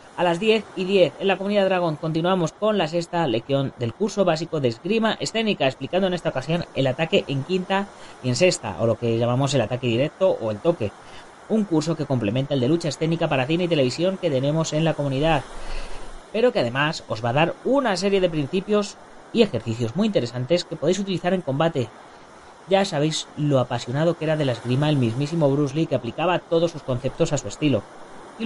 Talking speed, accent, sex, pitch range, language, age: 210 wpm, Spanish, female, 135-190 Hz, Spanish, 30-49